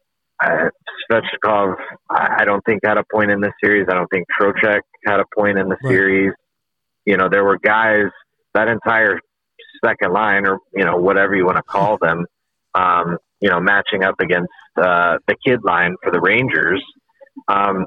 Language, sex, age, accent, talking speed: English, male, 30-49, American, 170 wpm